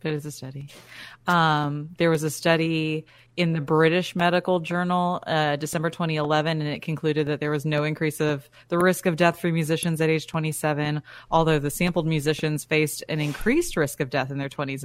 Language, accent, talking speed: English, American, 195 wpm